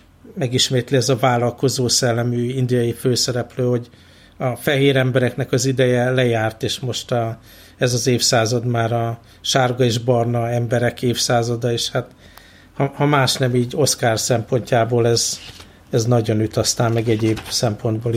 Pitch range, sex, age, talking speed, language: 110-130 Hz, male, 60-79, 145 wpm, Hungarian